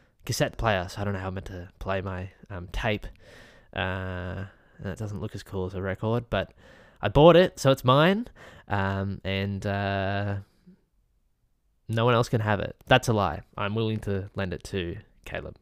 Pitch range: 95-125 Hz